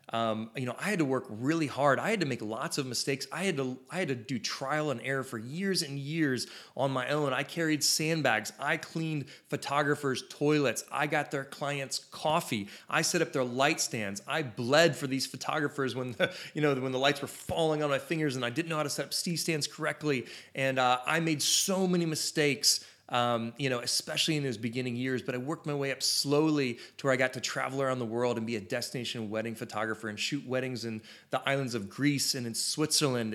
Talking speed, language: 230 wpm, English